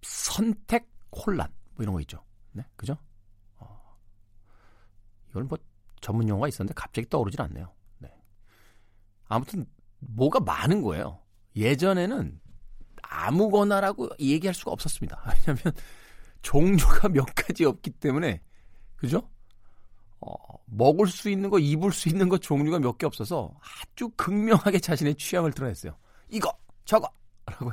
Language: Korean